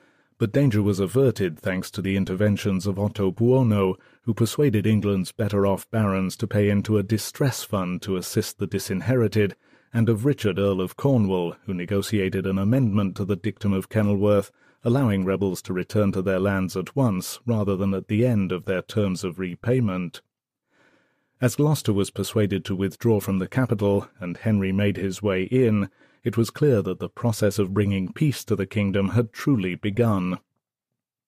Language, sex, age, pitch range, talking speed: English, male, 40-59, 95-115 Hz, 170 wpm